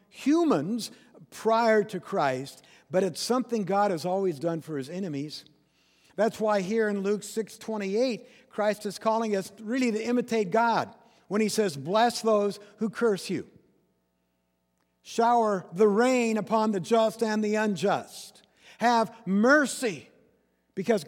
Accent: American